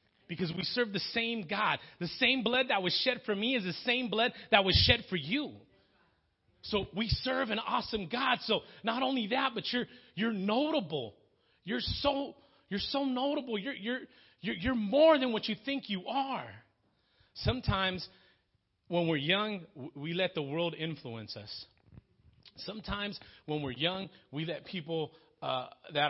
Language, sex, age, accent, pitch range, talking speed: English, male, 30-49, American, 145-210 Hz, 165 wpm